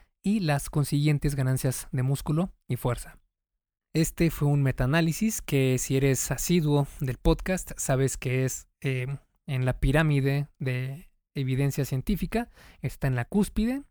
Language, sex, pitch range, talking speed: Spanish, male, 135-165 Hz, 140 wpm